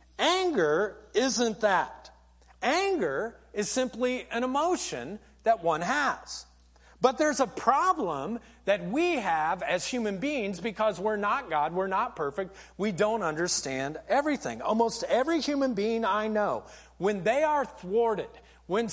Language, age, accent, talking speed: English, 40-59, American, 135 wpm